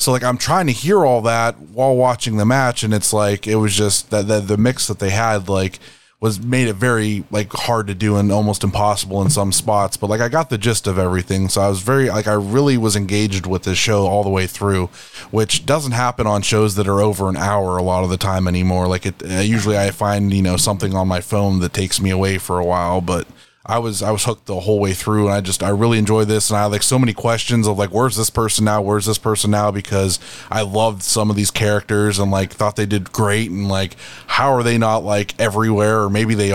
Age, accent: 20-39, American